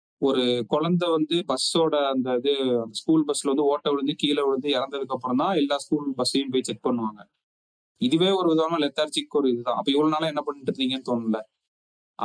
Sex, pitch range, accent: male, 130-165 Hz, native